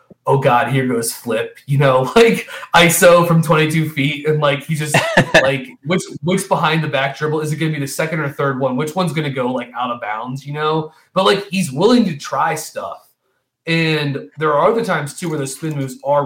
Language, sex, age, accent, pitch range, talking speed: English, male, 30-49, American, 130-170 Hz, 230 wpm